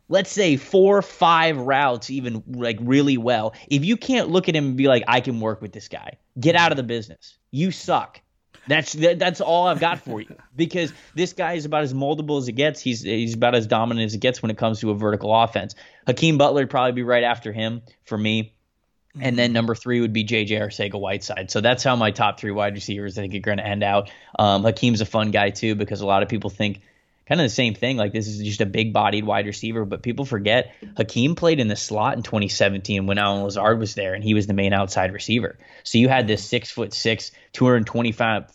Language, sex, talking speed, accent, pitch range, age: English, male, 240 wpm, American, 105-125 Hz, 20-39